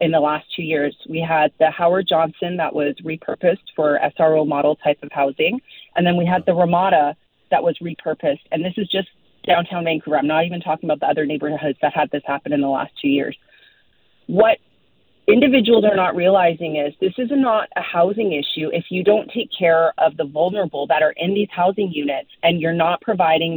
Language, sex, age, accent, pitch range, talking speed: English, female, 30-49, American, 165-230 Hz, 205 wpm